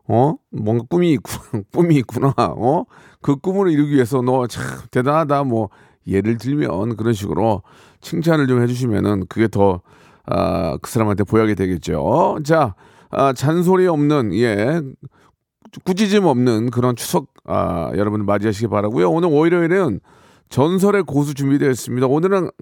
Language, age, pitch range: Korean, 40-59, 115-170 Hz